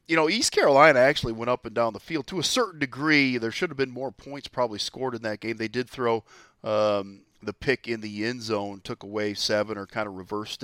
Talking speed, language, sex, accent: 245 wpm, English, male, American